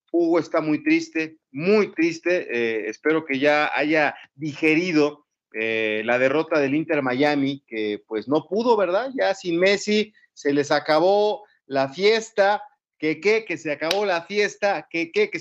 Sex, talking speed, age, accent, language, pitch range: male, 160 wpm, 40-59, Mexican, Spanish, 140-190 Hz